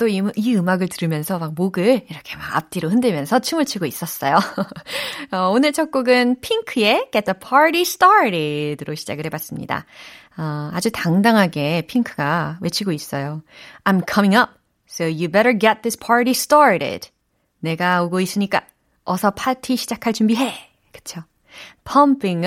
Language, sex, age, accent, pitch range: Korean, female, 30-49, native, 165-245 Hz